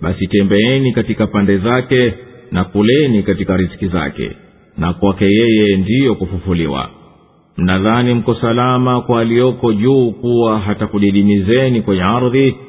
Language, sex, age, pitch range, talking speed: English, male, 50-69, 100-130 Hz, 110 wpm